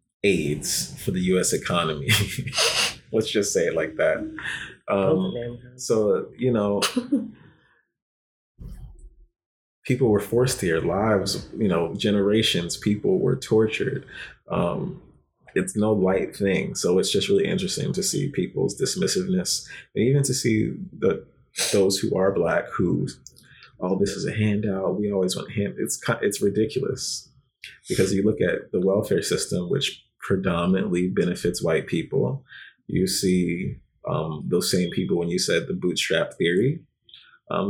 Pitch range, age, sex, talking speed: 95-130 Hz, 30-49, male, 140 wpm